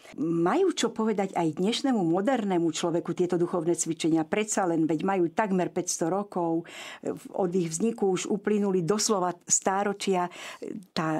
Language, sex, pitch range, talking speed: Slovak, female, 175-215 Hz, 135 wpm